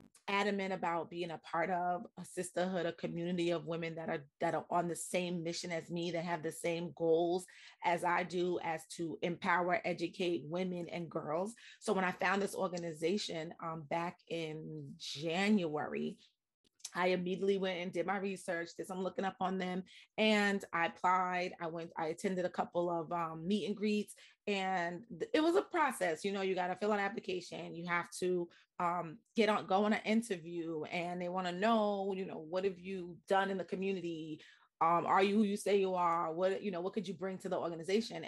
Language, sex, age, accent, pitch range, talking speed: English, female, 30-49, American, 175-215 Hz, 205 wpm